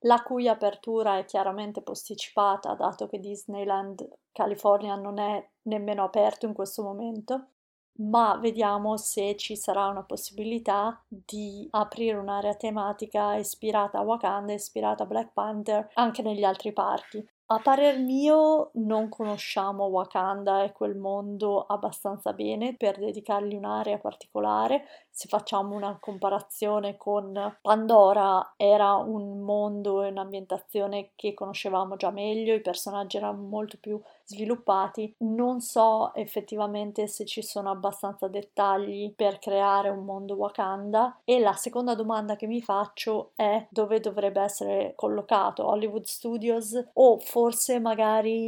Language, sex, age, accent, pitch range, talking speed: Italian, female, 30-49, native, 200-220 Hz, 130 wpm